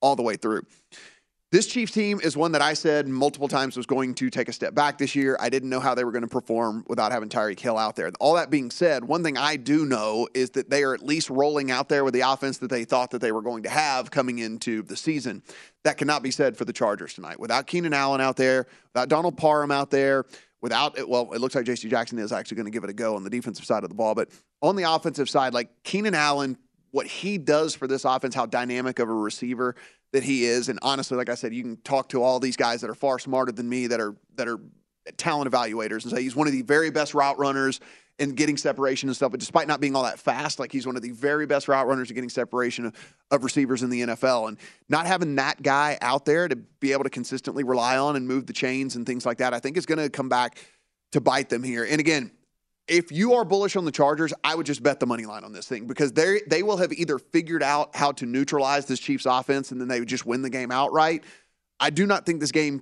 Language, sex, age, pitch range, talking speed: English, male, 30-49, 125-150 Hz, 265 wpm